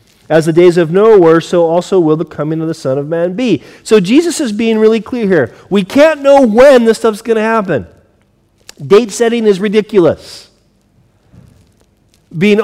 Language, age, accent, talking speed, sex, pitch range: English, 40-59, American, 180 wpm, male, 145-205 Hz